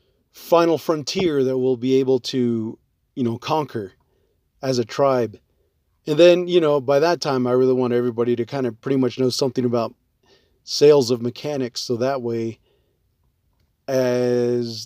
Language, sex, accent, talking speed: English, male, American, 160 wpm